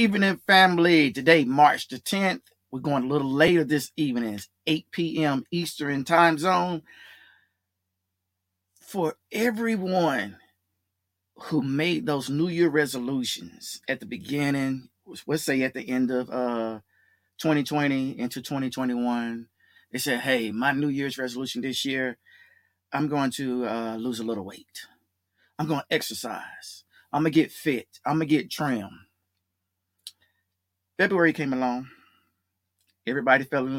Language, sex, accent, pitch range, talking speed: English, male, American, 105-155 Hz, 135 wpm